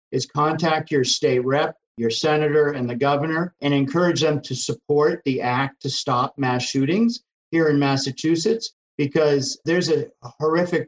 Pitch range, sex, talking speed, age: 135-165 Hz, male, 155 wpm, 50-69